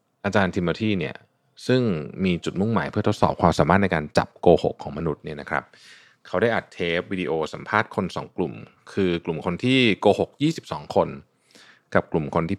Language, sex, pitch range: Thai, male, 85-120 Hz